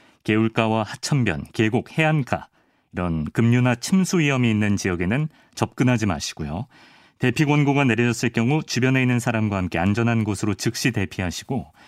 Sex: male